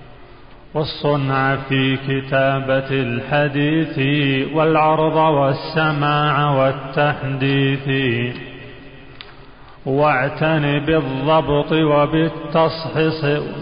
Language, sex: Arabic, male